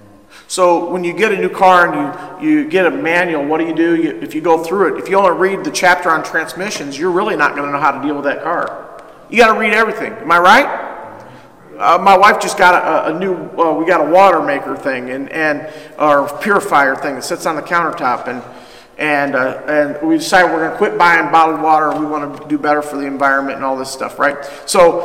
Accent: American